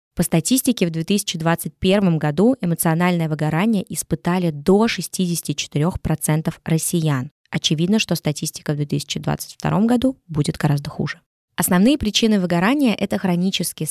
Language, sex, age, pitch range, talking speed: Russian, female, 20-39, 160-195 Hz, 110 wpm